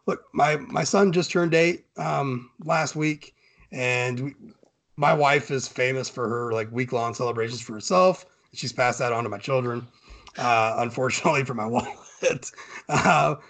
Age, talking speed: 30-49, 165 wpm